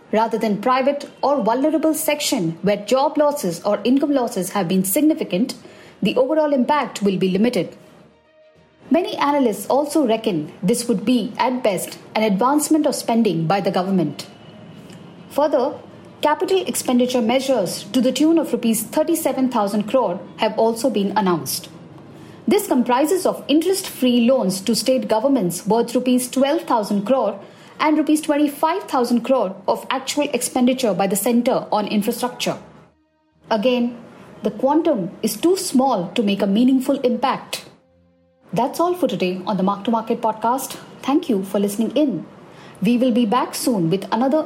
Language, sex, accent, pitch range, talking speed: English, female, Indian, 205-280 Hz, 145 wpm